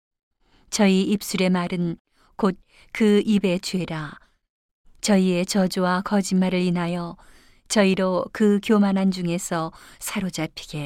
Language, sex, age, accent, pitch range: Korean, female, 40-59, native, 175-200 Hz